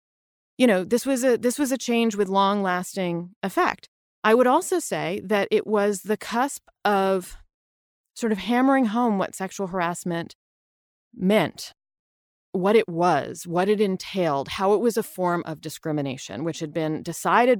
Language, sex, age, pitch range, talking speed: English, female, 30-49, 165-215 Hz, 165 wpm